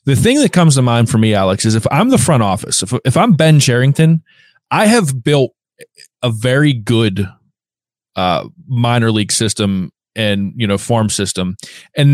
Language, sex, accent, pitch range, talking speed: English, male, American, 115-150 Hz, 180 wpm